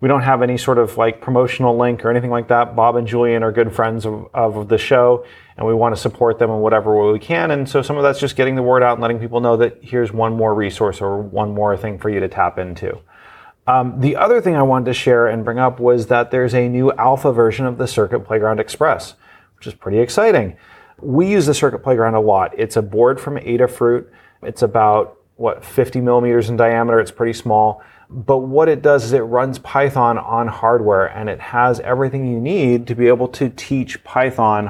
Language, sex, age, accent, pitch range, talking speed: English, male, 30-49, American, 115-135 Hz, 230 wpm